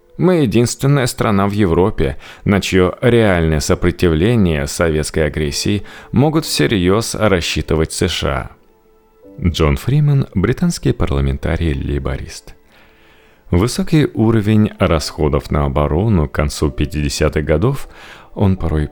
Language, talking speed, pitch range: Russian, 95 wpm, 75-110 Hz